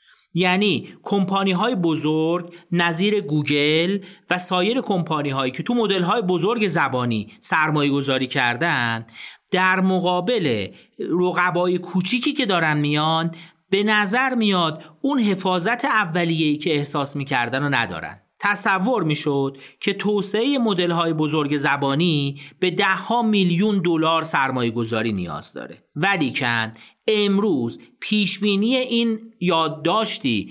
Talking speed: 110 wpm